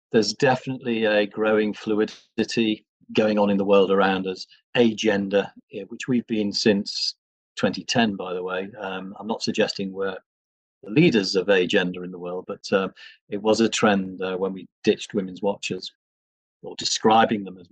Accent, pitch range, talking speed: British, 95-115 Hz, 165 wpm